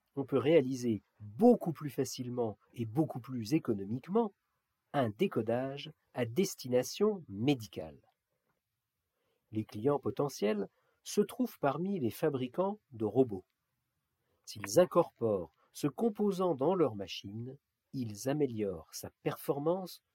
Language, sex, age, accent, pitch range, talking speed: French, male, 50-69, French, 115-170 Hz, 105 wpm